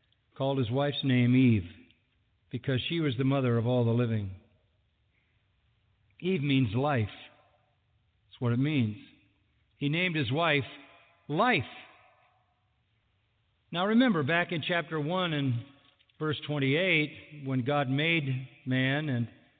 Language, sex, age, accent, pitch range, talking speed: English, male, 50-69, American, 110-155 Hz, 120 wpm